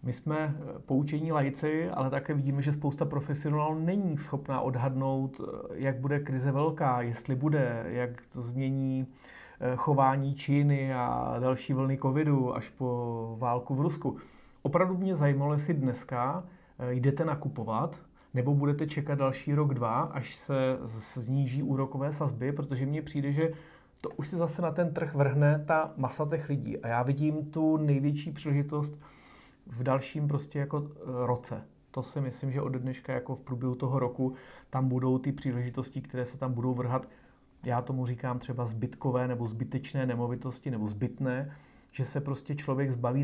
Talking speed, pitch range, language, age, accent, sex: 155 wpm, 125-145 Hz, Czech, 30-49, native, male